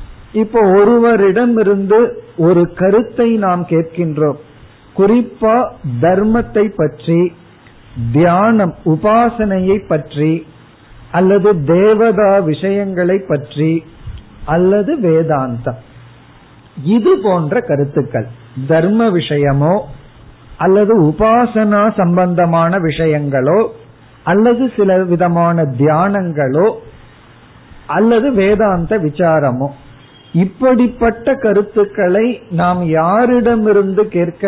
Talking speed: 65 wpm